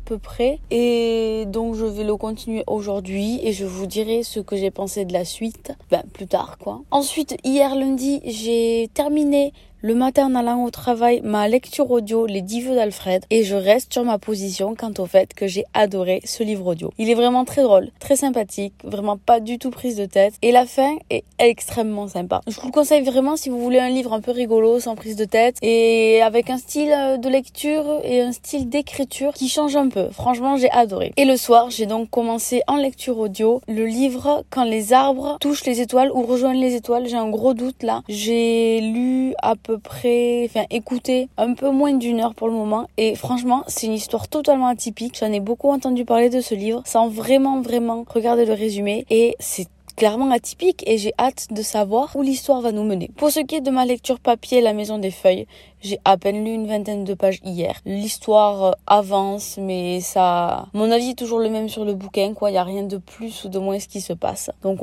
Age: 20-39